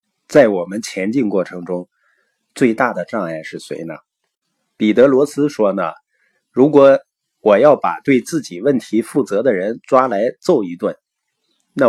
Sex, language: male, Chinese